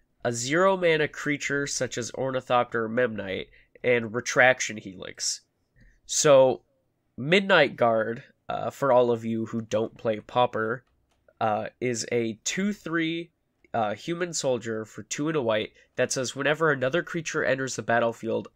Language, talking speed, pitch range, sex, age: English, 145 wpm, 115-150 Hz, male, 20-39